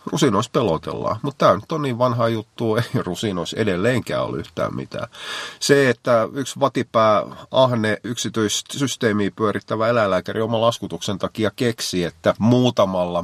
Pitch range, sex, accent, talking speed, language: 90-110 Hz, male, native, 130 wpm, Finnish